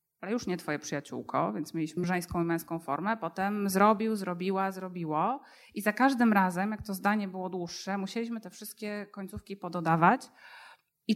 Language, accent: Polish, native